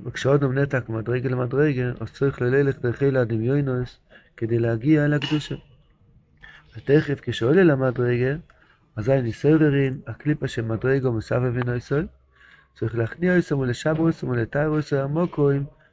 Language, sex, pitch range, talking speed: Hebrew, male, 115-145 Hz, 125 wpm